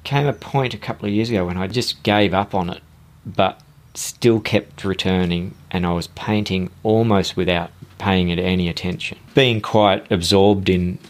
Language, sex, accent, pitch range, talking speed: English, male, Australian, 90-110 Hz, 180 wpm